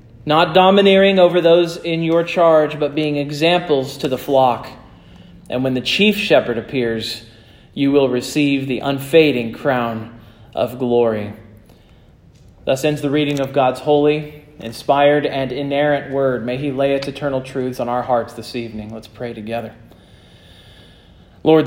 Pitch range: 125-165 Hz